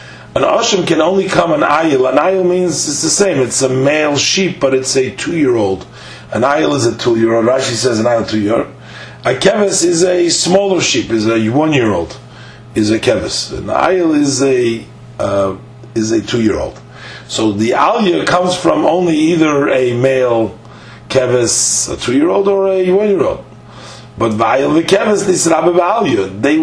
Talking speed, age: 165 wpm, 40-59